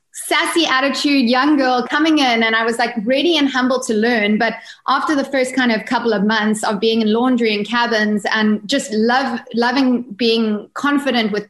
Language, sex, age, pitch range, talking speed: English, female, 20-39, 215-255 Hz, 195 wpm